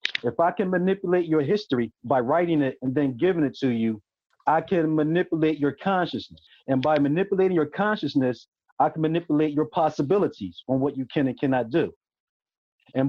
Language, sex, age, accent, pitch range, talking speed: English, male, 40-59, American, 140-180 Hz, 175 wpm